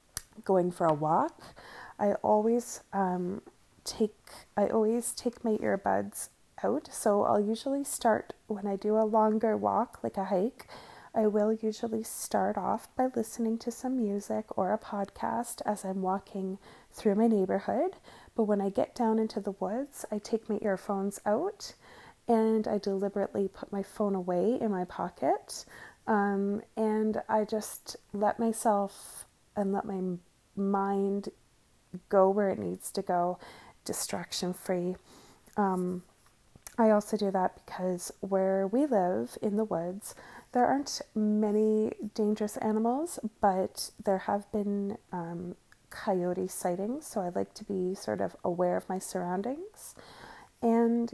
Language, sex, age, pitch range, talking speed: English, female, 30-49, 190-225 Hz, 140 wpm